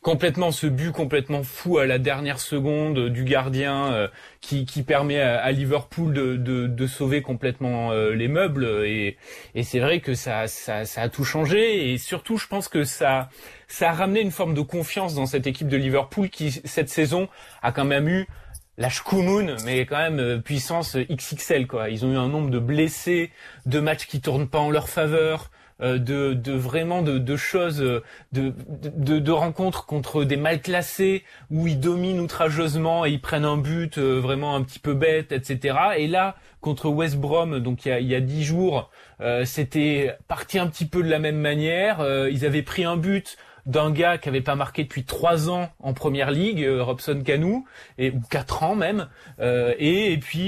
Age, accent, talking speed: 20-39, French, 195 wpm